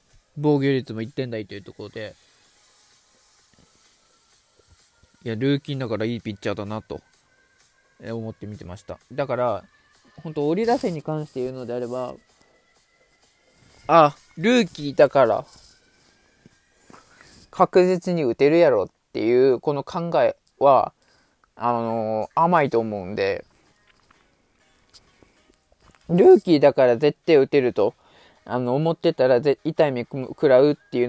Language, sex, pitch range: Japanese, male, 115-155 Hz